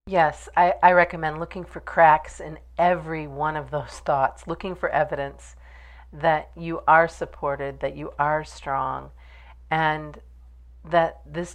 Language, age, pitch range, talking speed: English, 40-59, 125-170 Hz, 140 wpm